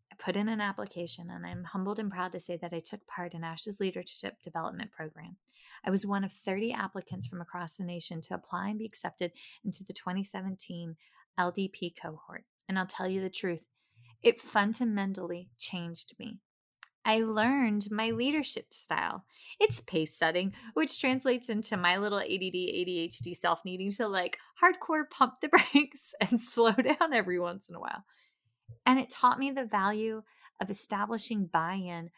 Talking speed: 170 wpm